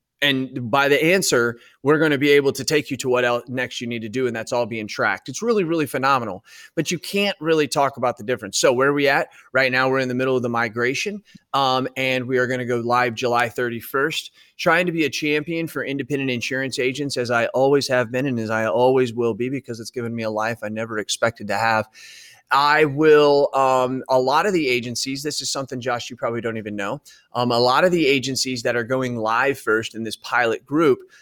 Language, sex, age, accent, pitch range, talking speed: English, male, 30-49, American, 120-145 Hz, 240 wpm